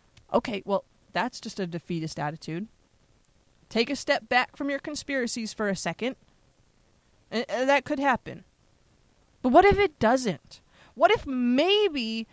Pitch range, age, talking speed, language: 200-275 Hz, 30-49, 135 wpm, English